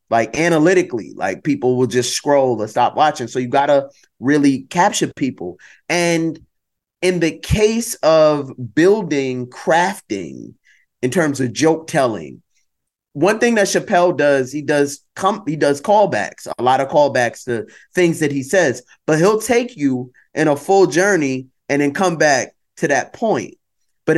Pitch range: 135-175 Hz